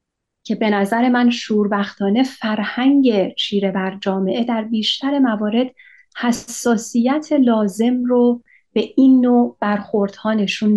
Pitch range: 215-260 Hz